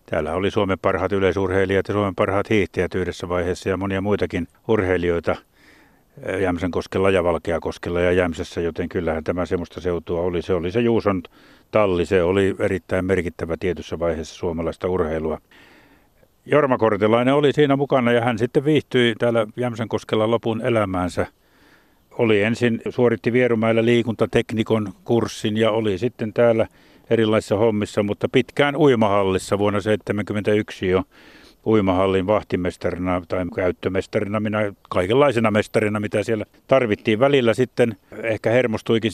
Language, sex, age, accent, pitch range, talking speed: Finnish, male, 60-79, native, 95-115 Hz, 130 wpm